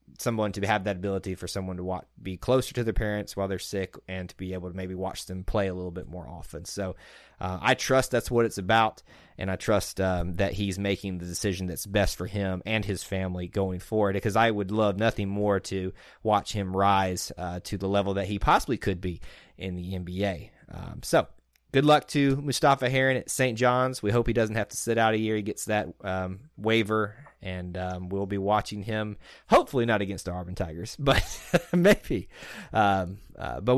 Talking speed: 215 wpm